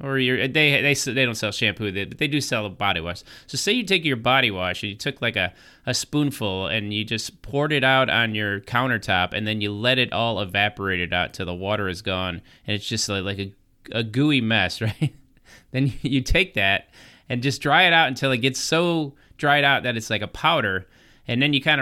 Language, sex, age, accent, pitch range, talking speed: English, male, 30-49, American, 105-145 Hz, 235 wpm